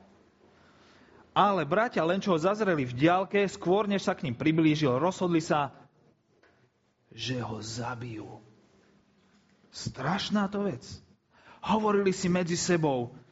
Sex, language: male, Slovak